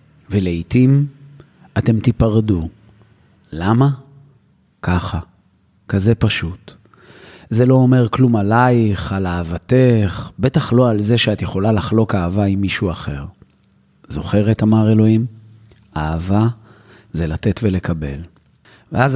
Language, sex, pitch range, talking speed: Hebrew, male, 95-120 Hz, 105 wpm